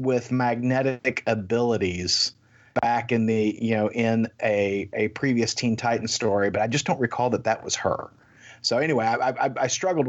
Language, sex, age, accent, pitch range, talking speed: English, male, 40-59, American, 110-125 Hz, 180 wpm